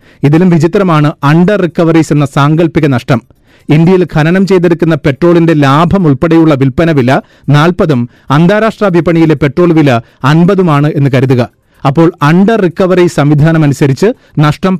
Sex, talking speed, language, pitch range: male, 115 wpm, Malayalam, 140-175 Hz